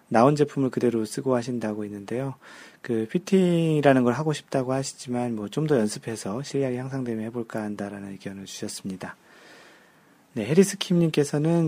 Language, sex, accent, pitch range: Korean, male, native, 110-155 Hz